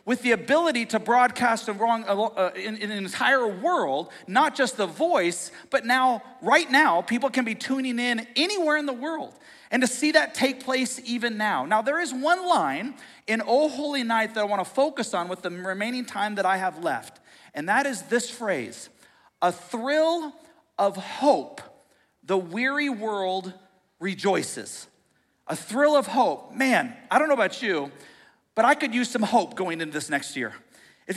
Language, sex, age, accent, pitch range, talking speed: English, male, 40-59, American, 210-285 Hz, 175 wpm